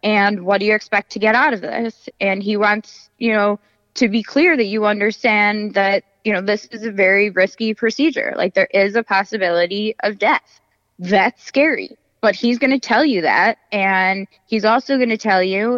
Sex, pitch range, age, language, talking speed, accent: female, 195-230 Hz, 20-39, English, 200 wpm, American